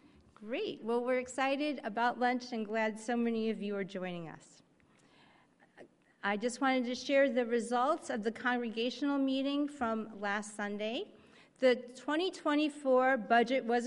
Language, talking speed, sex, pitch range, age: English, 145 wpm, female, 225-265 Hz, 40-59